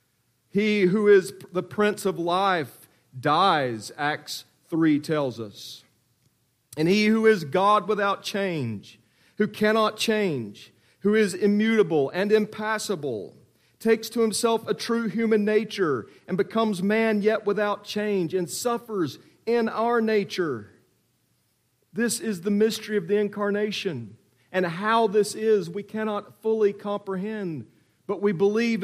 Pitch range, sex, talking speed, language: 125-205 Hz, male, 130 wpm, English